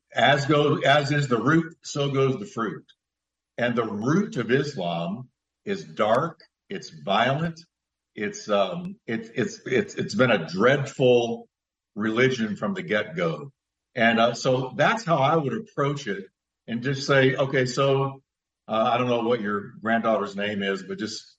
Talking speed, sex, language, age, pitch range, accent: 165 wpm, male, English, 50-69, 110-140 Hz, American